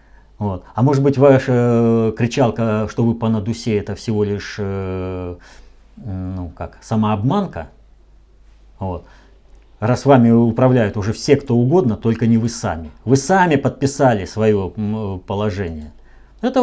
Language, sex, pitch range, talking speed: Russian, male, 90-130 Hz, 110 wpm